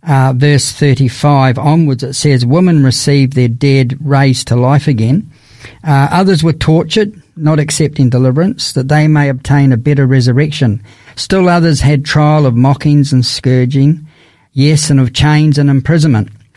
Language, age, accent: English, 50-69, Australian